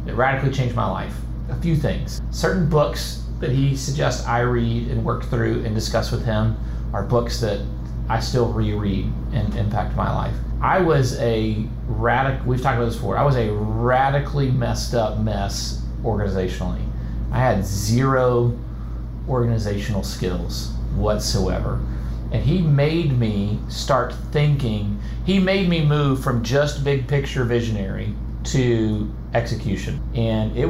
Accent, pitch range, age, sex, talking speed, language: American, 100-130 Hz, 40-59, male, 145 wpm, English